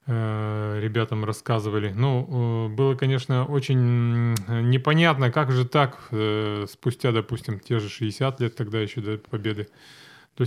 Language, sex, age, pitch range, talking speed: Russian, male, 20-39, 110-125 Hz, 120 wpm